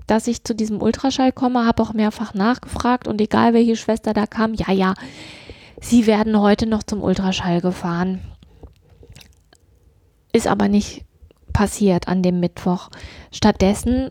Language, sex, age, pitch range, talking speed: German, female, 20-39, 205-240 Hz, 140 wpm